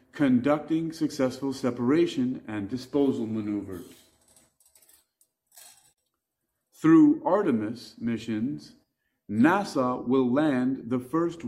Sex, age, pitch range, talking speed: male, 40-59, 120-165 Hz, 75 wpm